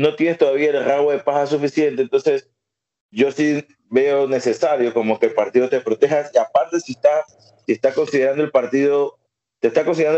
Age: 30-49